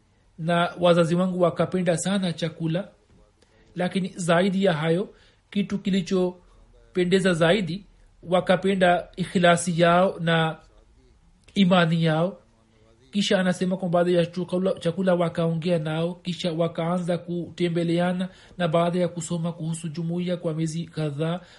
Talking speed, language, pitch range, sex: 110 wpm, Swahili, 145-180 Hz, male